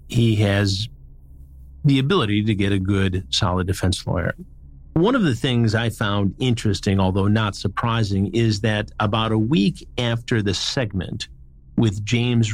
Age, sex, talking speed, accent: 50-69, male, 150 wpm, American